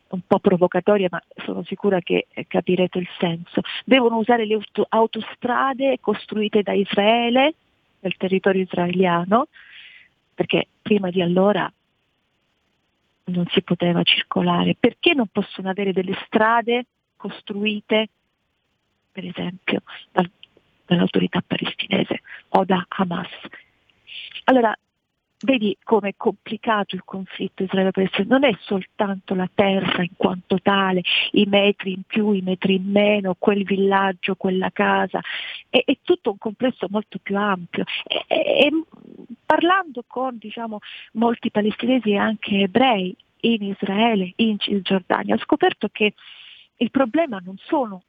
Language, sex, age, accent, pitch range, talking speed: Italian, female, 40-59, native, 190-230 Hz, 125 wpm